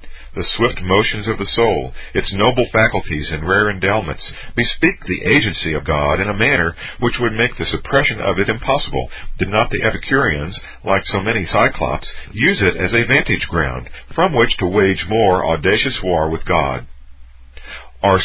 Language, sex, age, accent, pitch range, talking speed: English, male, 50-69, American, 80-120 Hz, 170 wpm